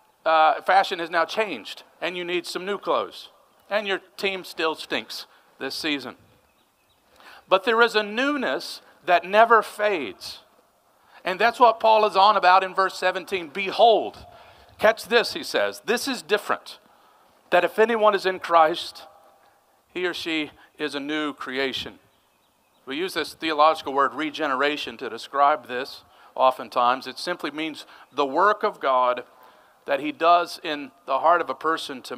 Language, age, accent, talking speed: English, 50-69, American, 155 wpm